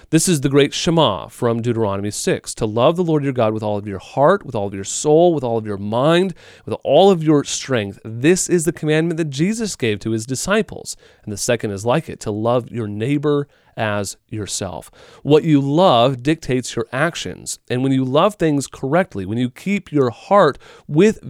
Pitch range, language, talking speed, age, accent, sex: 115-160 Hz, English, 210 wpm, 30-49, American, male